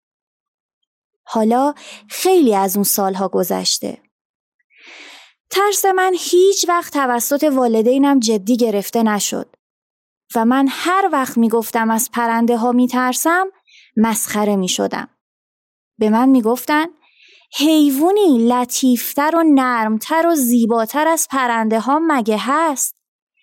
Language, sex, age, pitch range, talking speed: Persian, female, 20-39, 220-300 Hz, 110 wpm